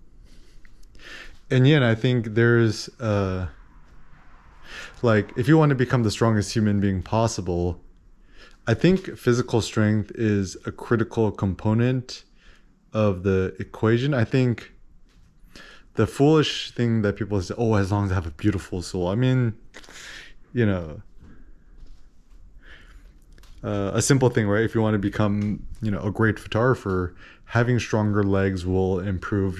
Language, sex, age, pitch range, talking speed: English, male, 20-39, 95-115 Hz, 140 wpm